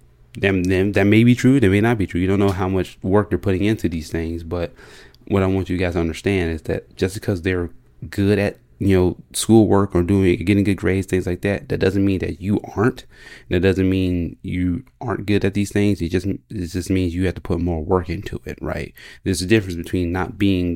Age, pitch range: 20-39, 85-100 Hz